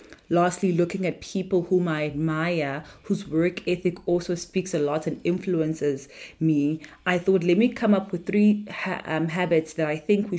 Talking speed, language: 180 wpm, English